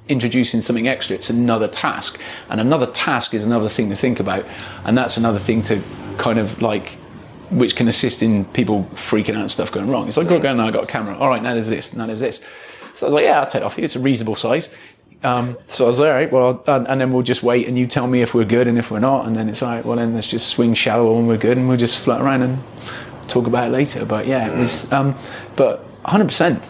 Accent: British